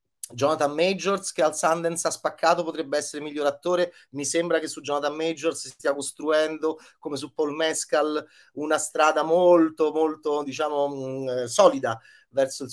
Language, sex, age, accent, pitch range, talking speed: Italian, male, 30-49, native, 135-165 Hz, 150 wpm